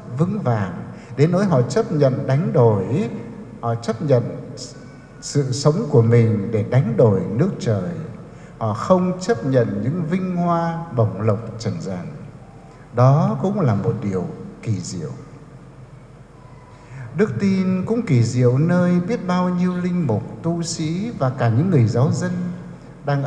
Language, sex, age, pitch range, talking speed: English, male, 60-79, 120-165 Hz, 150 wpm